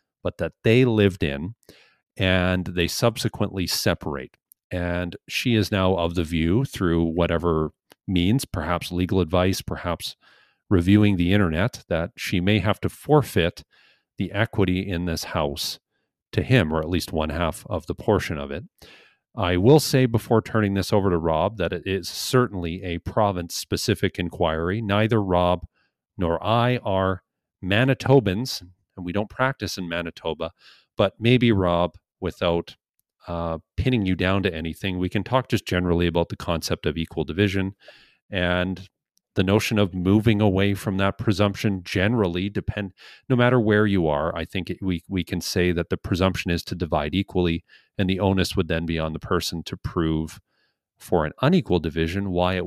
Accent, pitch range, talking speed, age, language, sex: American, 85-105 Hz, 165 wpm, 40-59, English, male